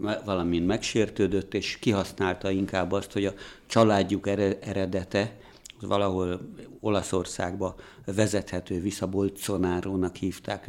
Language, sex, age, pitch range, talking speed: Hungarian, male, 60-79, 95-105 Hz, 90 wpm